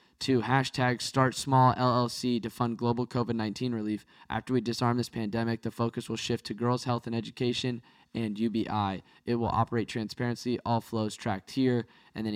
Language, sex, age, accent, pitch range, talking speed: English, male, 10-29, American, 105-135 Hz, 180 wpm